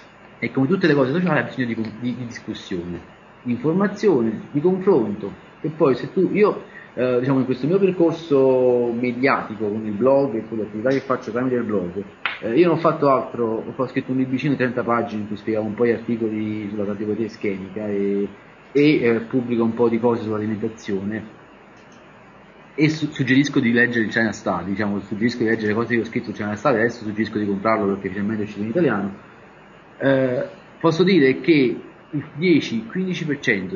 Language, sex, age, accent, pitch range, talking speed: Italian, male, 30-49, native, 105-140 Hz, 190 wpm